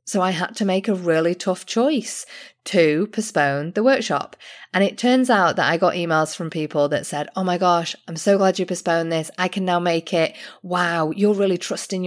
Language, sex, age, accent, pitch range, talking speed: English, female, 20-39, British, 155-200 Hz, 215 wpm